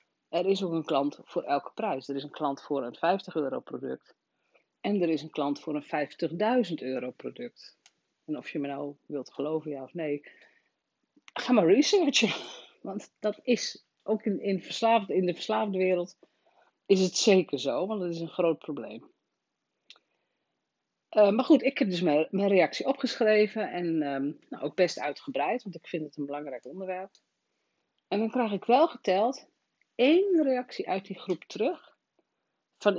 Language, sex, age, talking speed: Dutch, female, 40-59, 170 wpm